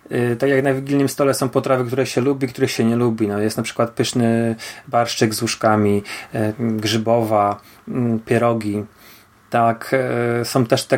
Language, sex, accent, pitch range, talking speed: Polish, male, native, 110-120 Hz, 155 wpm